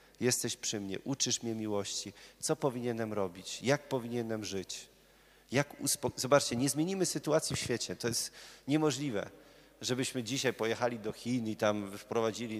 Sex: male